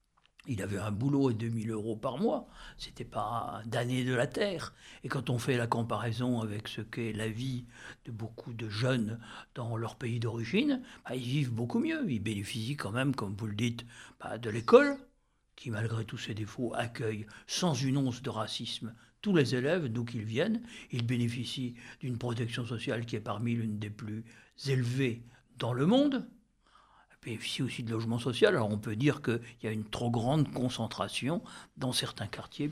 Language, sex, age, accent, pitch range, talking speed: French, male, 60-79, French, 115-140 Hz, 185 wpm